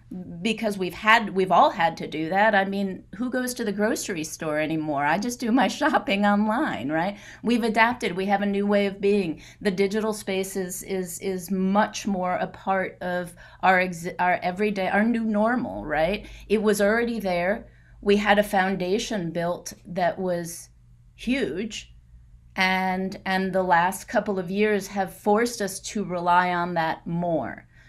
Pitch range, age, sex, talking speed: 170-200 Hz, 30-49, female, 170 wpm